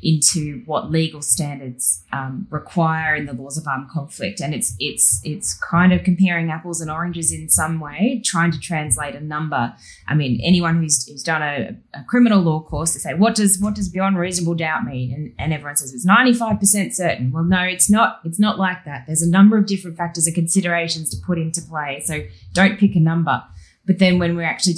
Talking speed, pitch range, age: 220 wpm, 150-185 Hz, 10-29